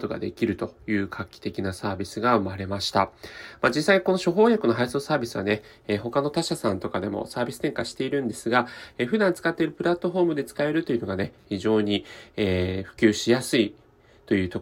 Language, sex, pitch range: Japanese, male, 110-165 Hz